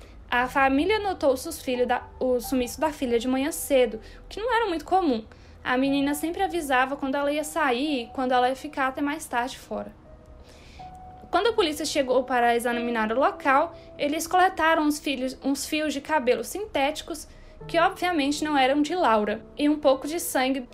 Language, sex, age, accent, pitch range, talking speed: Portuguese, female, 10-29, Brazilian, 250-325 Hz, 175 wpm